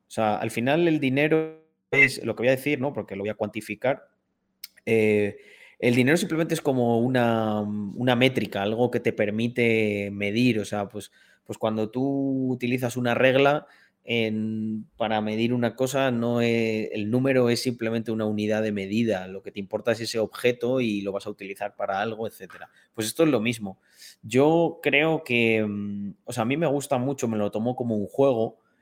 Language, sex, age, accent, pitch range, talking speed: Spanish, male, 30-49, Spanish, 105-125 Hz, 190 wpm